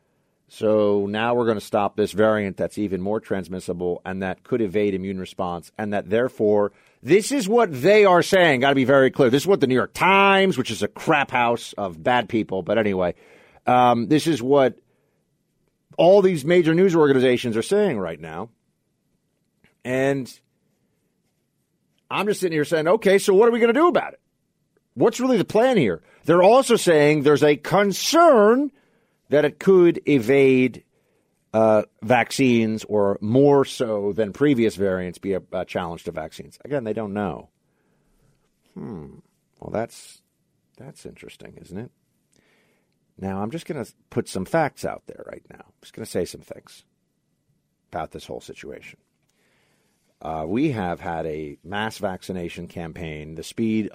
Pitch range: 100-160 Hz